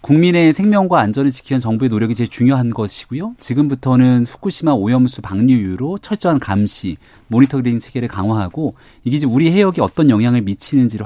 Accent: native